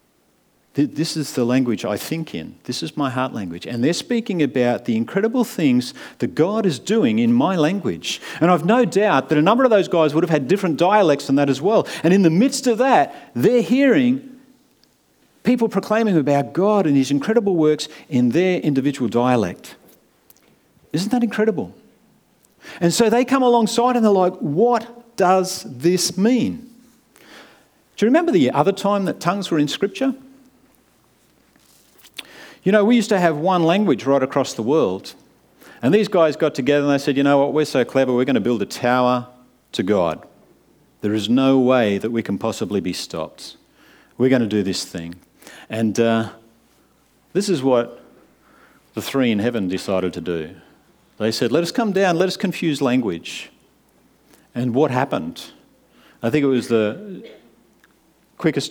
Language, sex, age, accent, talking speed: English, male, 50-69, Australian, 175 wpm